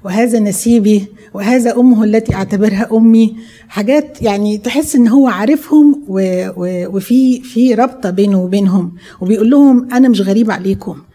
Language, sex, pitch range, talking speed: Arabic, female, 180-230 Hz, 135 wpm